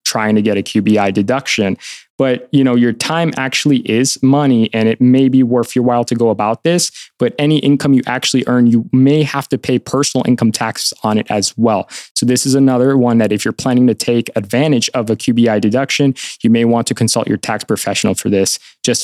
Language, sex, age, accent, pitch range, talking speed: English, male, 20-39, American, 115-135 Hz, 220 wpm